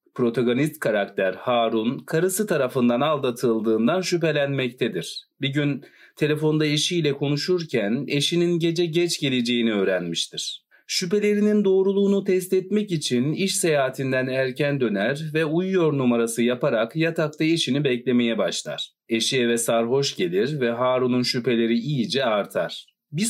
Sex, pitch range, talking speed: male, 125-180 Hz, 115 wpm